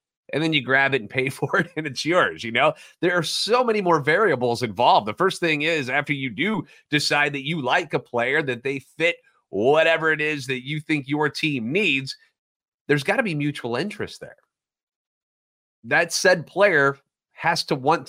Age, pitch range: 30-49, 125-165 Hz